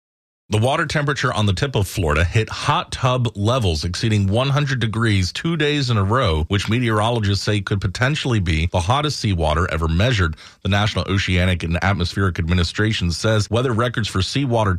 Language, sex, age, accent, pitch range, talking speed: English, male, 30-49, American, 95-120 Hz, 170 wpm